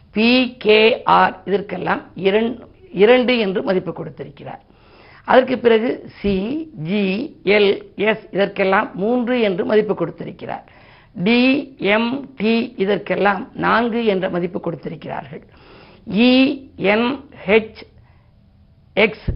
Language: Tamil